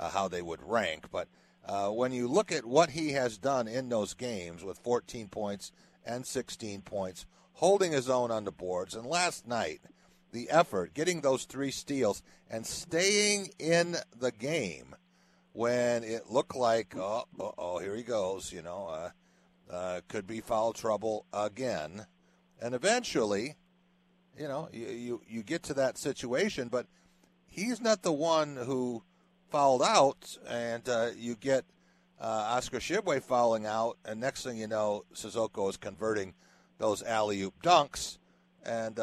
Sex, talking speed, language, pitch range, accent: male, 155 wpm, English, 110-170 Hz, American